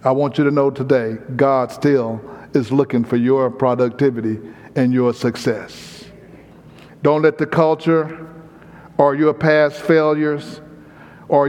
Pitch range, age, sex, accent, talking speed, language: 125-150 Hz, 50-69, male, American, 130 wpm, English